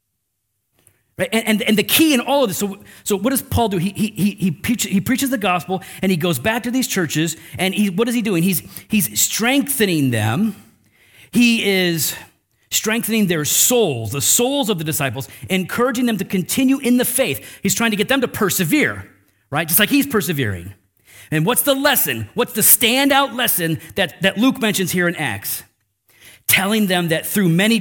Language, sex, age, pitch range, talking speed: English, male, 40-59, 155-240 Hz, 195 wpm